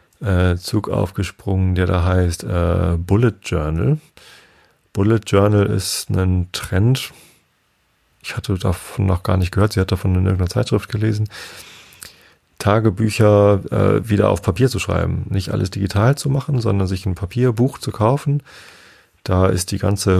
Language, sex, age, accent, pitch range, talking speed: German, male, 40-59, German, 90-110 Hz, 145 wpm